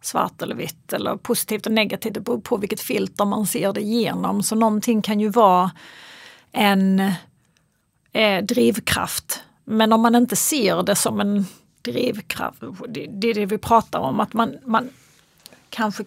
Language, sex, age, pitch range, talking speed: Swedish, female, 40-59, 175-225 Hz, 155 wpm